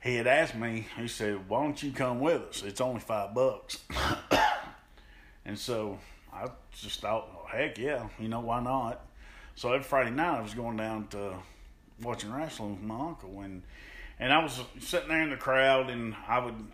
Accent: American